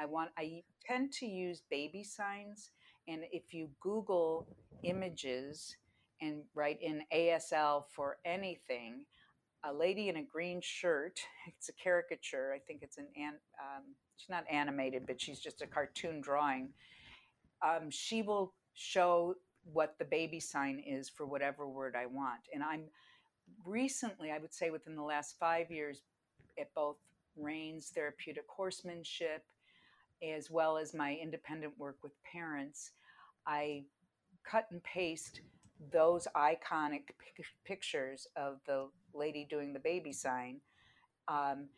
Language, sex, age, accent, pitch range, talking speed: English, female, 50-69, American, 145-180 Hz, 135 wpm